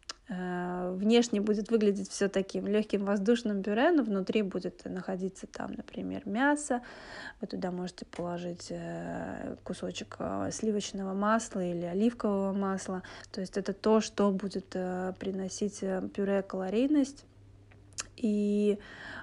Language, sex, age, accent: Russian, female, 20-39, native